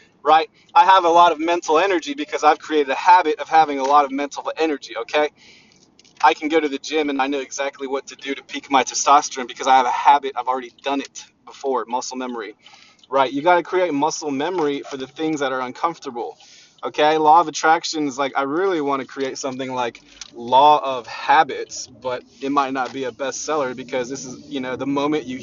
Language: English